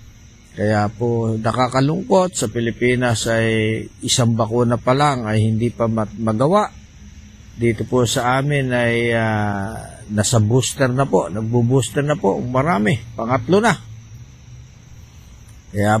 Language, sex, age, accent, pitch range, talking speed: Filipino, male, 50-69, native, 110-130 Hz, 115 wpm